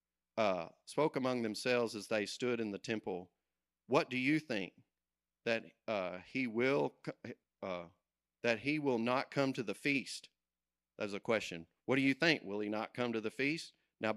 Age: 40-59